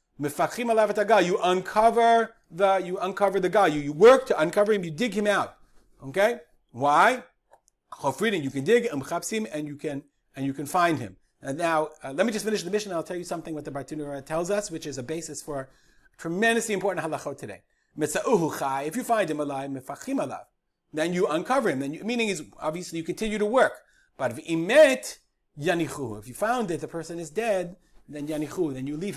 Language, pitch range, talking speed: English, 140-205 Hz, 195 wpm